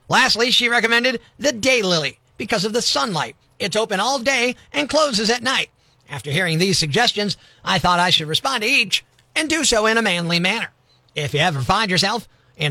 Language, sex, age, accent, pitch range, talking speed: English, male, 50-69, American, 160-245 Hz, 195 wpm